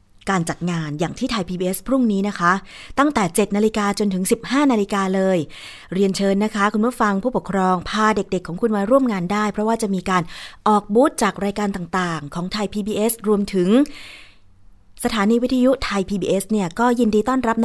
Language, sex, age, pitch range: Thai, female, 20-39, 170-220 Hz